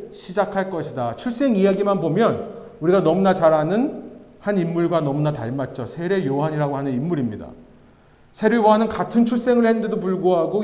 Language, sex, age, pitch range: Korean, male, 40-59, 170-230 Hz